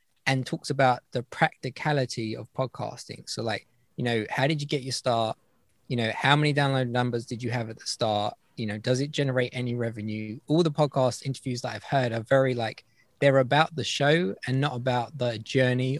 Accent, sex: British, male